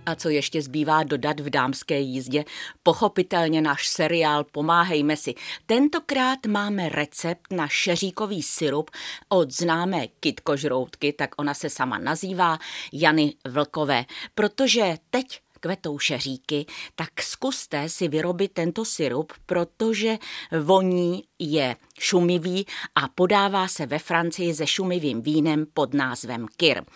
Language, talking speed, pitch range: Czech, 120 wpm, 150-200 Hz